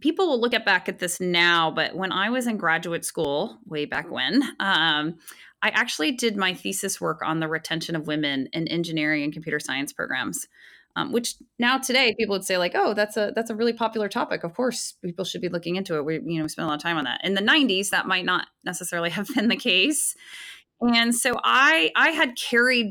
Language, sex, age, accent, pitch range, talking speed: English, female, 20-39, American, 160-225 Hz, 230 wpm